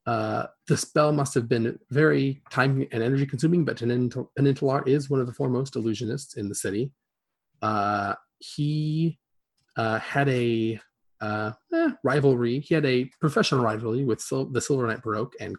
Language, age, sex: English, 30-49, male